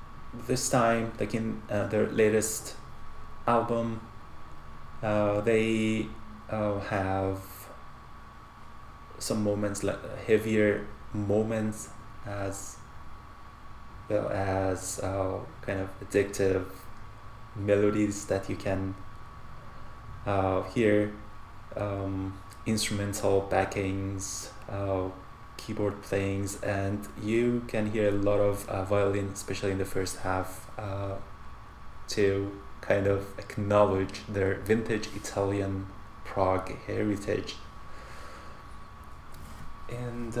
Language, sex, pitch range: English, male, 95-110 Hz